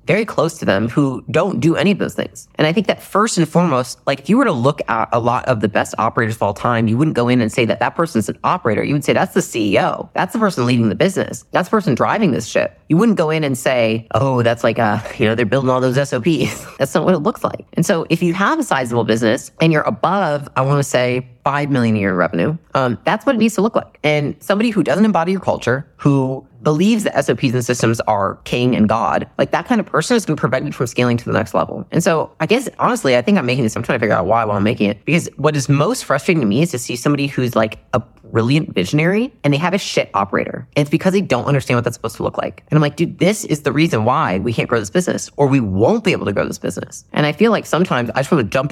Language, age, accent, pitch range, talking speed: English, 30-49, American, 120-185 Hz, 290 wpm